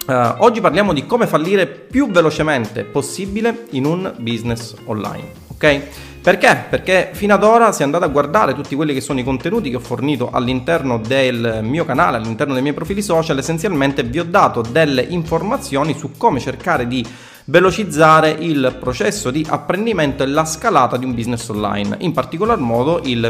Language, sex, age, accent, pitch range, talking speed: Italian, male, 30-49, native, 120-165 Hz, 175 wpm